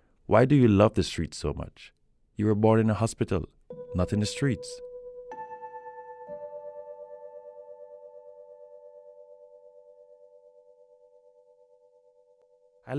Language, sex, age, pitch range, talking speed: English, male, 30-49, 80-100 Hz, 90 wpm